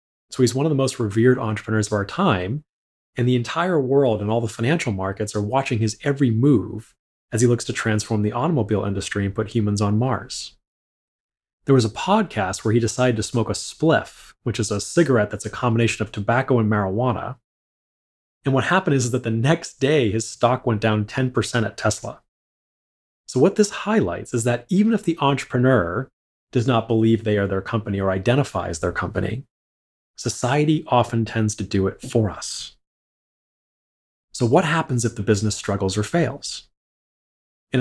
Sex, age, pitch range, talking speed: male, 30-49, 105-130 Hz, 185 wpm